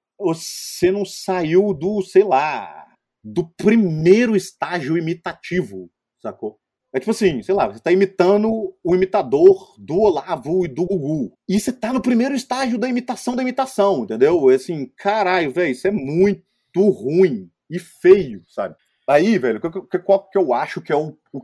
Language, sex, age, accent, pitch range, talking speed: Portuguese, male, 30-49, Brazilian, 165-215 Hz, 160 wpm